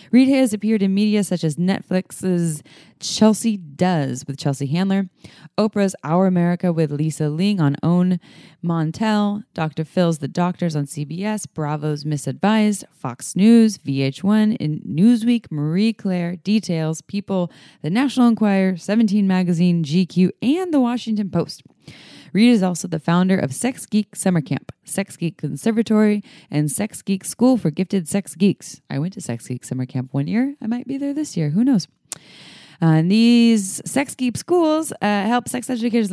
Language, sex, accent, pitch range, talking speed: English, female, American, 155-210 Hz, 160 wpm